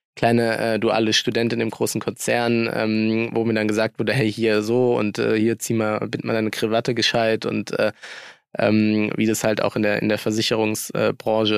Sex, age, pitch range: male, 20-39, 110-120 Hz